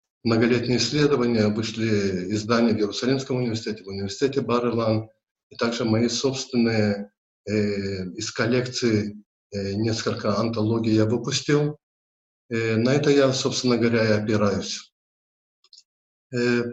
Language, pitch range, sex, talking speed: Russian, 110-130 Hz, male, 110 wpm